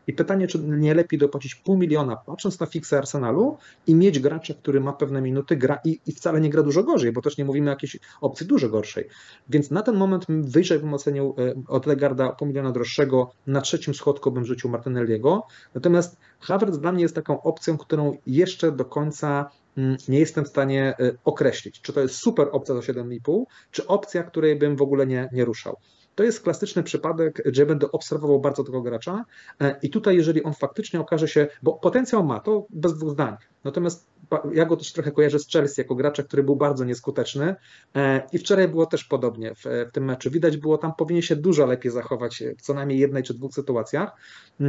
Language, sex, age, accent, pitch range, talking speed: Polish, male, 30-49, native, 130-160 Hz, 195 wpm